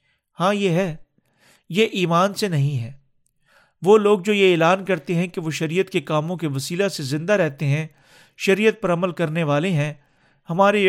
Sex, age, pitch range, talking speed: male, 50-69, 145-190 Hz, 180 wpm